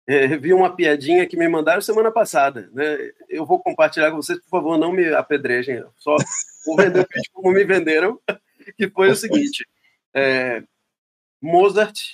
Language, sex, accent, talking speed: Portuguese, male, Brazilian, 175 wpm